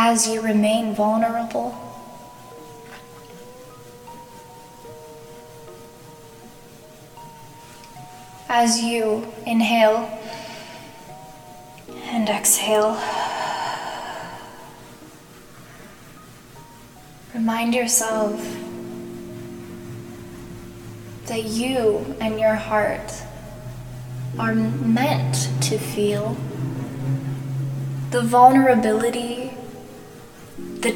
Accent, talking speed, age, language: American, 45 wpm, 10-29, English